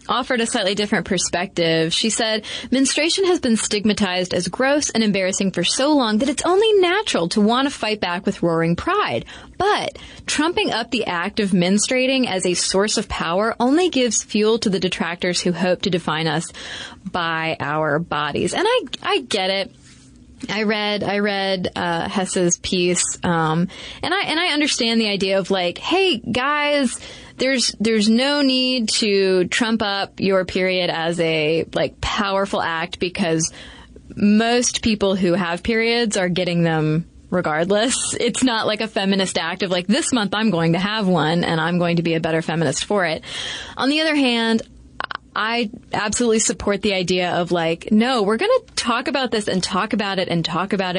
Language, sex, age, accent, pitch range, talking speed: English, female, 20-39, American, 180-235 Hz, 180 wpm